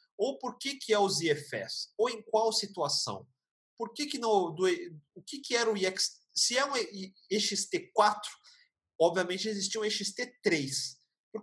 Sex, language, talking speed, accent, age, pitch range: male, Portuguese, 160 wpm, Brazilian, 40-59, 155-225 Hz